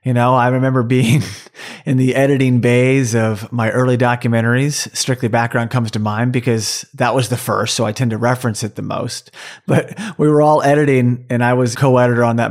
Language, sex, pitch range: English, male, 120-150 Hz